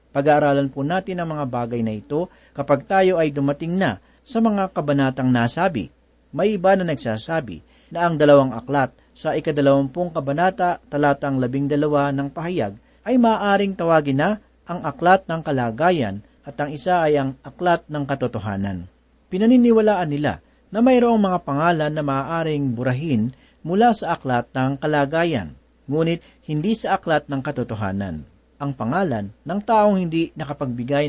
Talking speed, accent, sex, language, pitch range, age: 145 wpm, native, male, Filipino, 135-185 Hz, 40-59